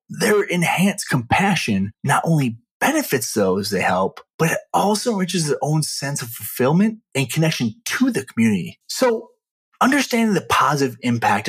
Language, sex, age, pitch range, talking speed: English, male, 30-49, 120-190 Hz, 145 wpm